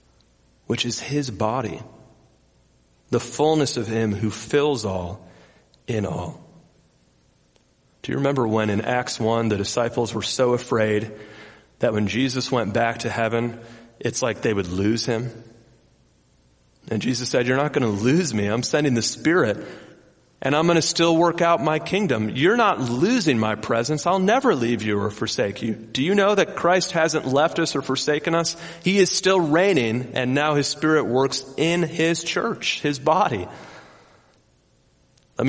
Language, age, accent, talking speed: English, 30-49, American, 165 wpm